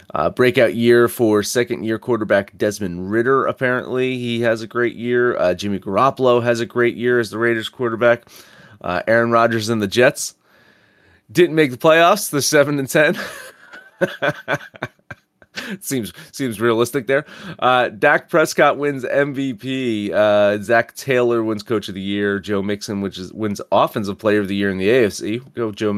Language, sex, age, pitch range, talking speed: English, male, 30-49, 100-120 Hz, 170 wpm